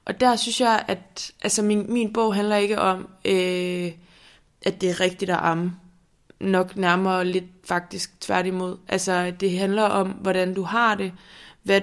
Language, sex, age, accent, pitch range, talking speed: Danish, female, 20-39, native, 180-215 Hz, 170 wpm